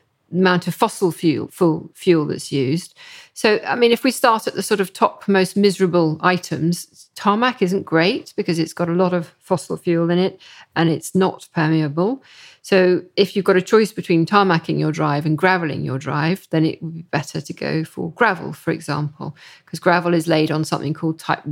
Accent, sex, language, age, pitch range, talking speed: British, female, English, 50-69, 160-185 Hz, 200 wpm